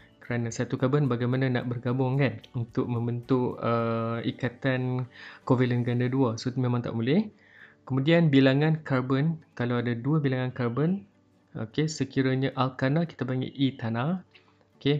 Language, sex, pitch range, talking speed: Malay, male, 120-135 Hz, 135 wpm